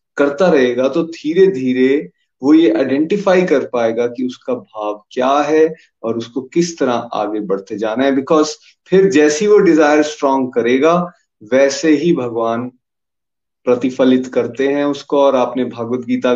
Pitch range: 120-170 Hz